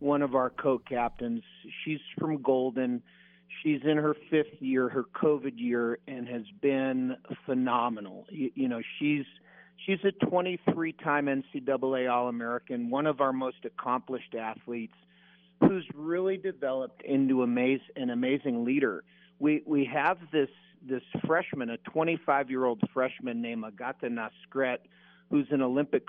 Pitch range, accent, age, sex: 125-155 Hz, American, 50-69, male